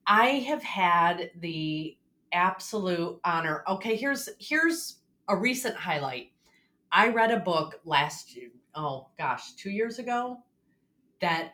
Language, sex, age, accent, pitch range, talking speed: English, female, 30-49, American, 145-185 Hz, 125 wpm